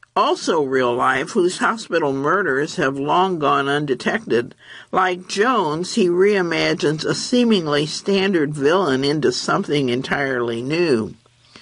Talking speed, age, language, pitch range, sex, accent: 115 wpm, 60-79, English, 145-210 Hz, male, American